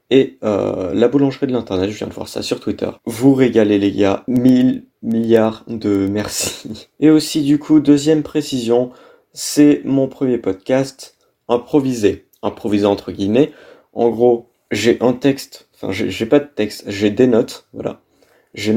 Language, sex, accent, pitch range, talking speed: French, male, French, 105-140 Hz, 165 wpm